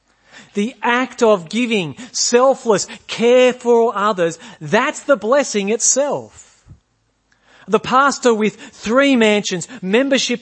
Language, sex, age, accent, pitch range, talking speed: English, male, 40-59, Australian, 160-240 Hz, 105 wpm